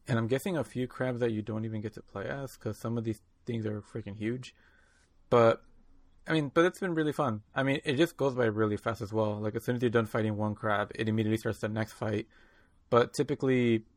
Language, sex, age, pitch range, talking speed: English, male, 20-39, 105-115 Hz, 245 wpm